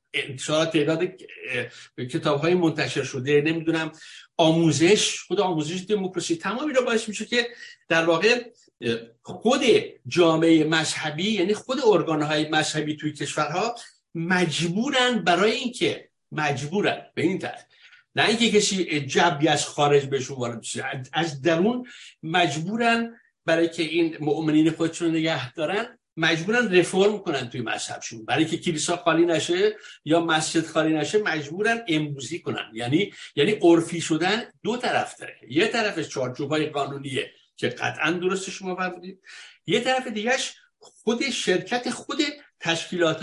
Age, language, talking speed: 60-79, Persian, 130 wpm